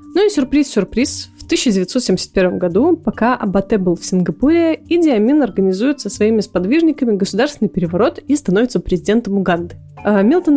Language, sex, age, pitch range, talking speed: Russian, female, 20-39, 195-265 Hz, 135 wpm